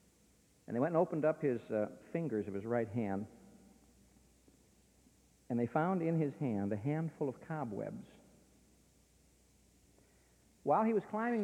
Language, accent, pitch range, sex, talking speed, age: English, American, 110-170 Hz, male, 140 wpm, 60-79